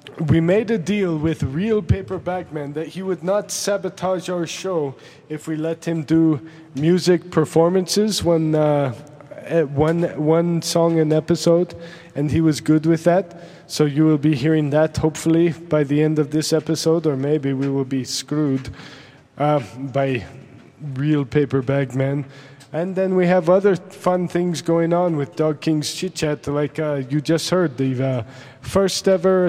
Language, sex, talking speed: English, male, 170 wpm